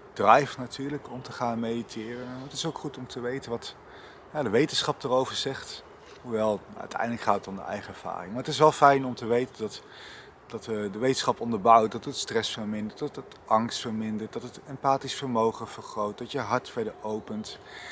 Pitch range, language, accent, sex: 105-130 Hz, Dutch, Dutch, male